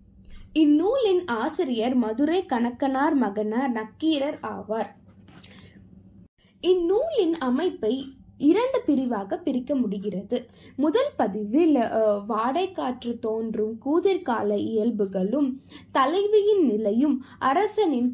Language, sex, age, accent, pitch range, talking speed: Tamil, female, 20-39, native, 230-335 Hz, 75 wpm